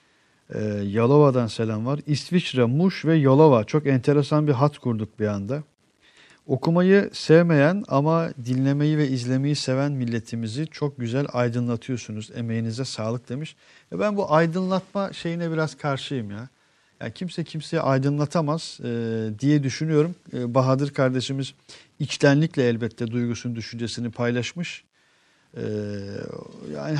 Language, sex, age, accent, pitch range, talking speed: Turkish, male, 50-69, native, 120-150 Hz, 105 wpm